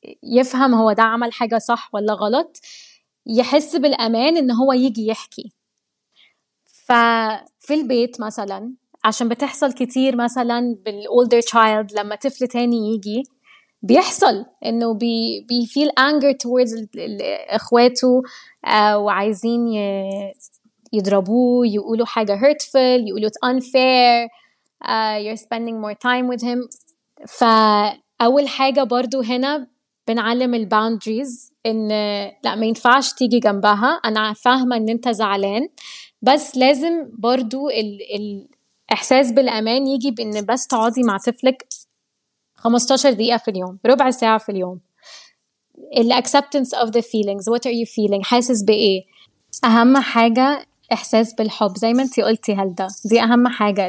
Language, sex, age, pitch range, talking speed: Arabic, female, 20-39, 215-260 Hz, 120 wpm